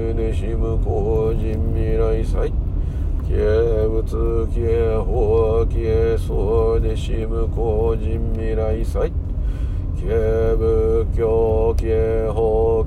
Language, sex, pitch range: Japanese, male, 90-115 Hz